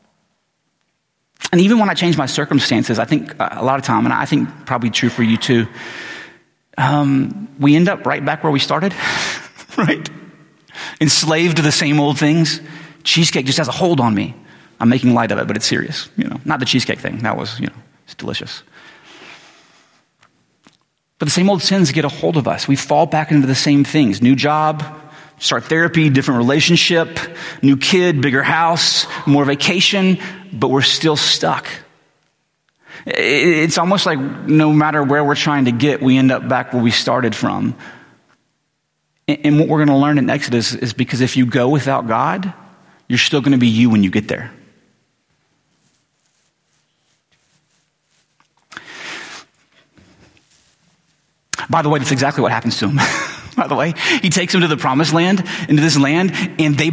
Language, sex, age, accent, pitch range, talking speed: English, male, 30-49, American, 130-160 Hz, 170 wpm